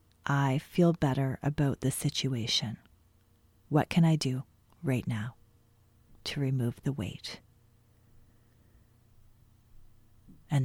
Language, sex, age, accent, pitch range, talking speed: English, female, 30-49, American, 110-180 Hz, 95 wpm